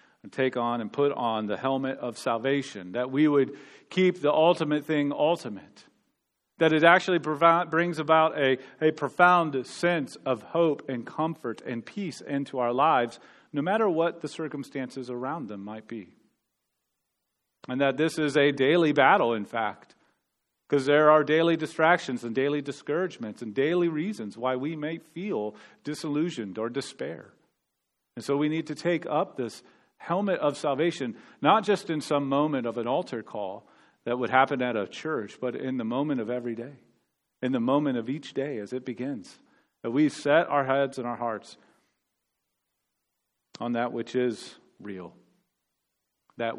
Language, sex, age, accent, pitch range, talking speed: English, male, 40-59, American, 125-160 Hz, 165 wpm